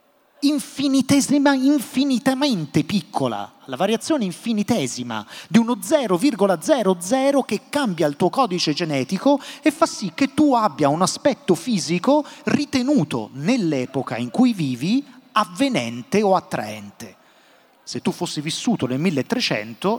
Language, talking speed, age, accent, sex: Italian, 115 wpm, 30-49, native, male